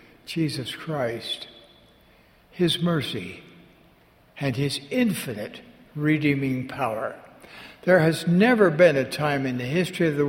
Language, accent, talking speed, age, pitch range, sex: English, American, 115 wpm, 60-79, 130-175 Hz, male